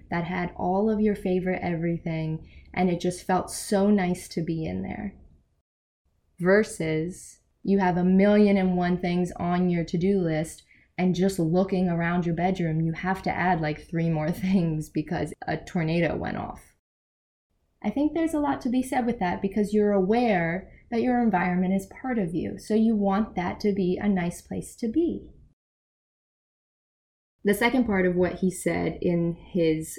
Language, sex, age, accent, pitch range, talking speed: English, female, 20-39, American, 165-200 Hz, 175 wpm